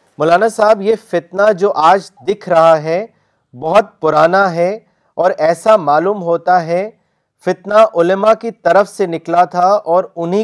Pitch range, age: 160-200 Hz, 40-59